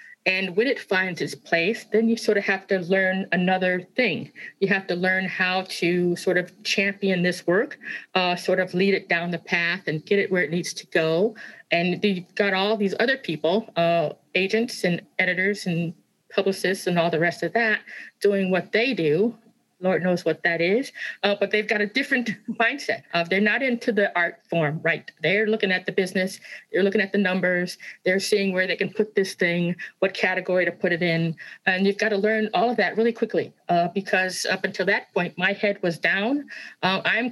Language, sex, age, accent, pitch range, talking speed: English, female, 50-69, American, 175-210 Hz, 210 wpm